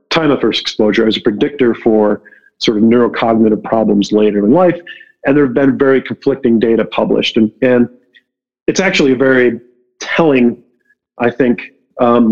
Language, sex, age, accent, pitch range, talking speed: English, male, 40-59, American, 110-130 Hz, 160 wpm